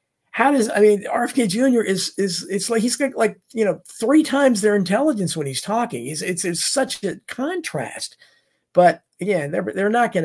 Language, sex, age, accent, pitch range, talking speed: English, male, 50-69, American, 180-245 Hz, 200 wpm